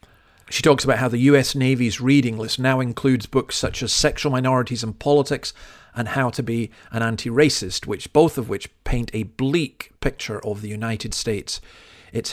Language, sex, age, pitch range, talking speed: English, male, 40-59, 110-135 Hz, 180 wpm